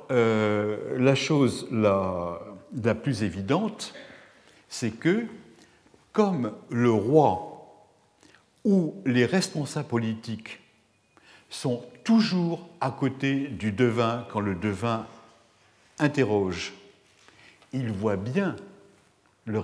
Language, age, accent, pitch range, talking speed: French, 60-79, French, 110-145 Hz, 90 wpm